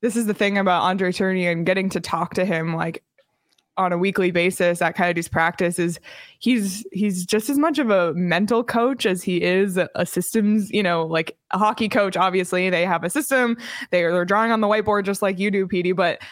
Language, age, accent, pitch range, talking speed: English, 20-39, American, 180-220 Hz, 220 wpm